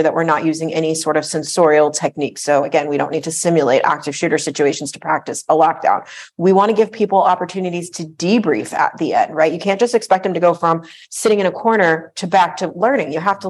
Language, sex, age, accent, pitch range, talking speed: English, female, 40-59, American, 155-190 Hz, 240 wpm